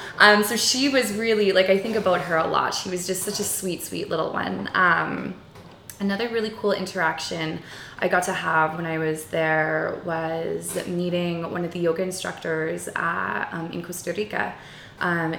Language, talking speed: English, 180 wpm